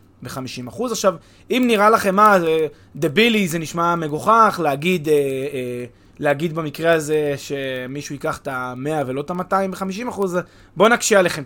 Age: 20-39